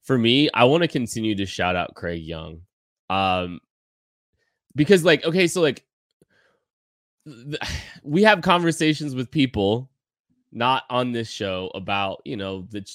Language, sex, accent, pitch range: English, male, American, 90-115 Hz